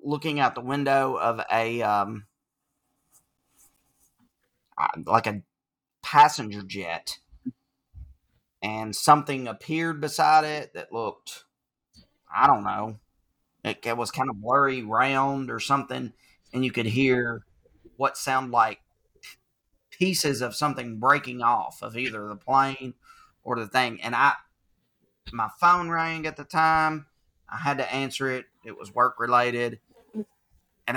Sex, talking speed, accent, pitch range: male, 130 wpm, American, 110-140 Hz